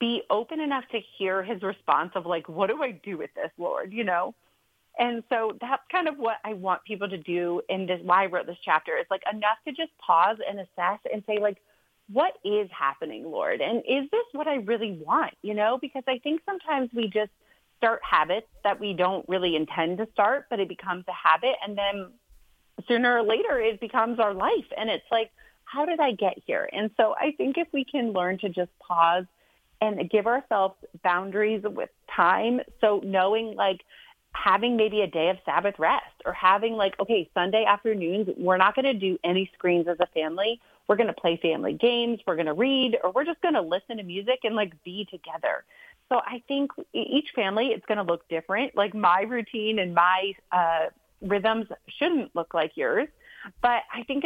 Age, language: 30-49, English